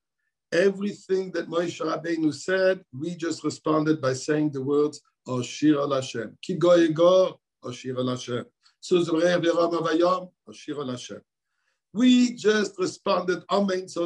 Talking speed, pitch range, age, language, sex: 130 wpm, 165-205 Hz, 60-79, English, male